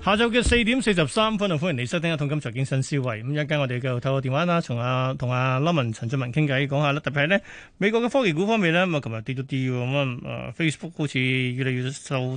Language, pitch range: Chinese, 135-180 Hz